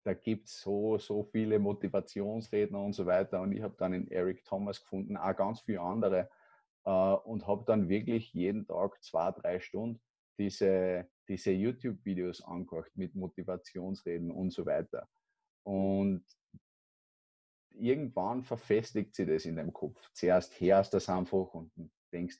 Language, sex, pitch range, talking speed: German, male, 90-105 Hz, 145 wpm